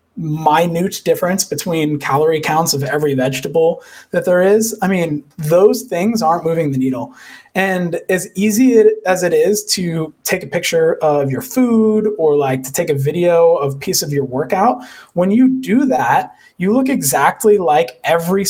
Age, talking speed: 20-39, 170 wpm